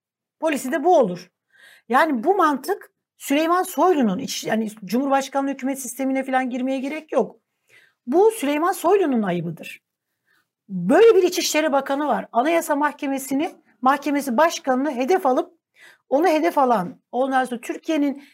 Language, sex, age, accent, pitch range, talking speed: Turkish, female, 60-79, native, 230-310 Hz, 120 wpm